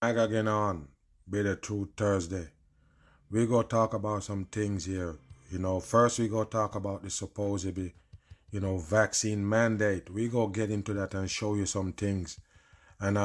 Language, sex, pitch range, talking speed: English, male, 100-115 Hz, 185 wpm